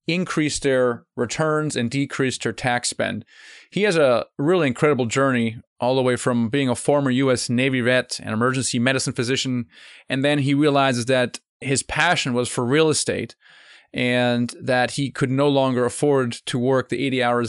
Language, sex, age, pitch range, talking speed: English, male, 30-49, 120-140 Hz, 175 wpm